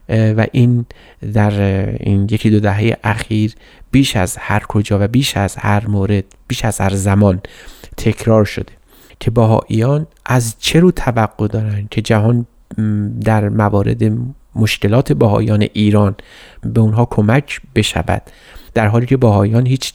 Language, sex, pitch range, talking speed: Persian, male, 105-120 Hz, 140 wpm